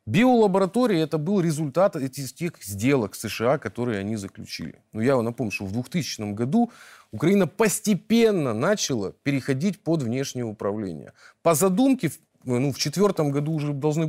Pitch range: 115-190 Hz